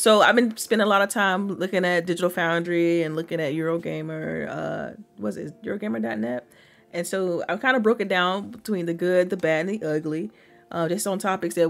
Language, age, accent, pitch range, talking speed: English, 30-49, American, 155-190 Hz, 205 wpm